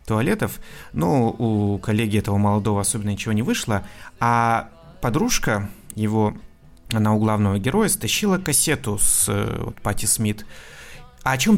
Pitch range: 110-140 Hz